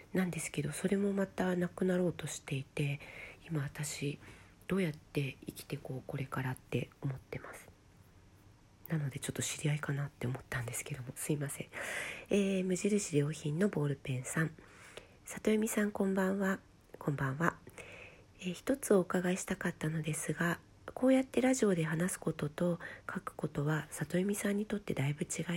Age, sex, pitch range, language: 40-59, female, 145-195 Hz, Japanese